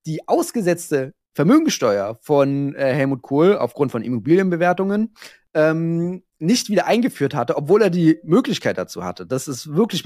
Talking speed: 145 wpm